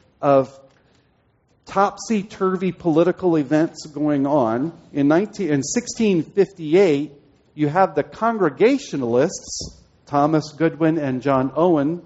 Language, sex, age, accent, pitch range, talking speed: English, male, 50-69, American, 125-170 Hz, 90 wpm